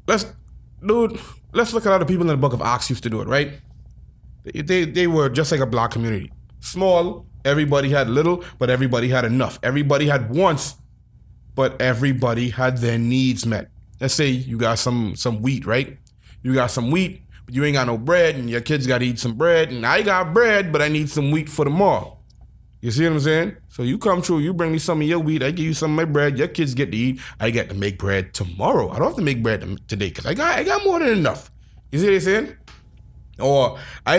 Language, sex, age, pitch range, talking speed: English, male, 20-39, 120-160 Hz, 240 wpm